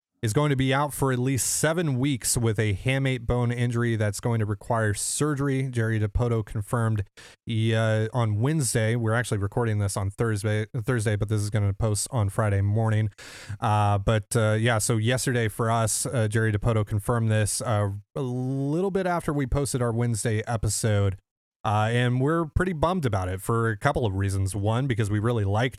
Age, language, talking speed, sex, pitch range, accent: 30-49, English, 195 wpm, male, 105-120 Hz, American